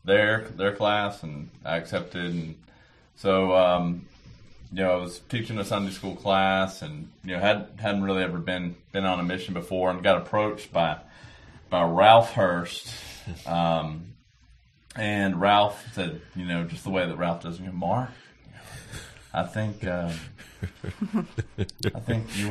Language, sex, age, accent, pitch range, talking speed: English, male, 30-49, American, 90-110 Hz, 155 wpm